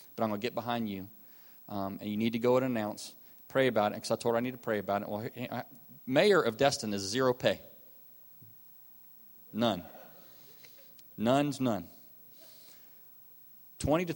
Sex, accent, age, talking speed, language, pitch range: male, American, 40-59, 180 wpm, English, 110-130 Hz